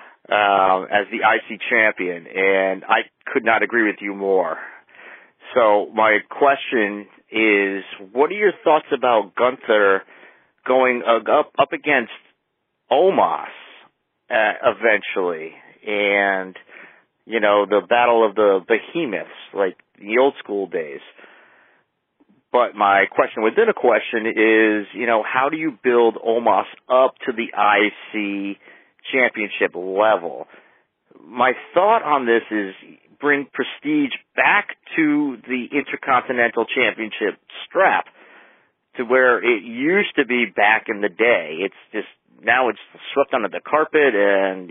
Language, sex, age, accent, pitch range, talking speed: English, male, 40-59, American, 105-140 Hz, 130 wpm